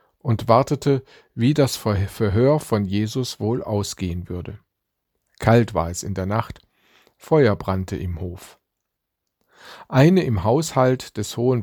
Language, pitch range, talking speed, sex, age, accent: German, 100-130 Hz, 130 wpm, male, 50-69, German